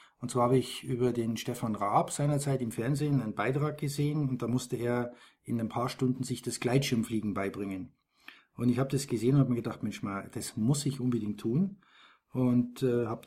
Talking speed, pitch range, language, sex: 200 wpm, 110-135 Hz, German, male